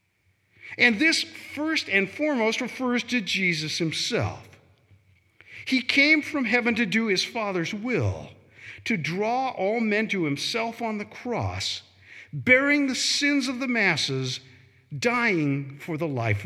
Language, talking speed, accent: English, 135 wpm, American